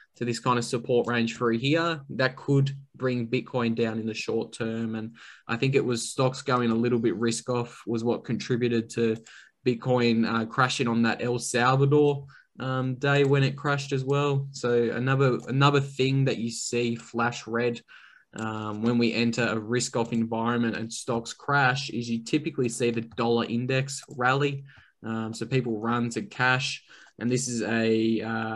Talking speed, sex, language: 180 wpm, male, English